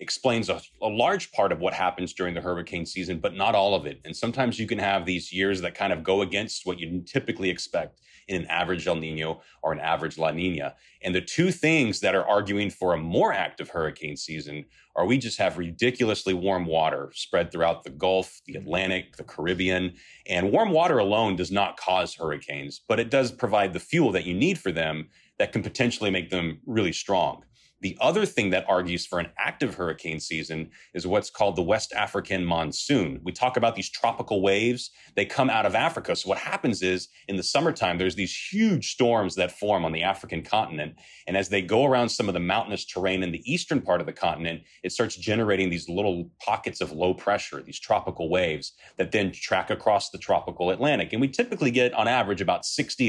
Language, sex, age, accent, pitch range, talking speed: English, male, 30-49, American, 85-100 Hz, 210 wpm